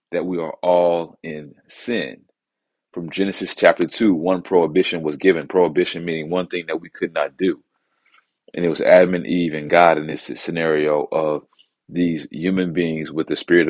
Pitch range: 80-95 Hz